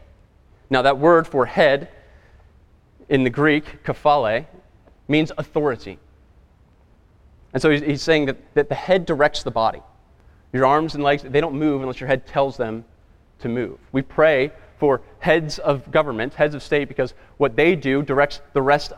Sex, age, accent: male, 30-49, American